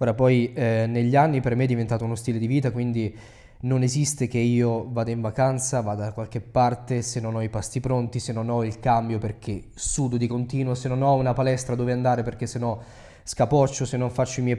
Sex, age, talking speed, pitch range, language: male, 20-39, 230 wpm, 110-135 Hz, Italian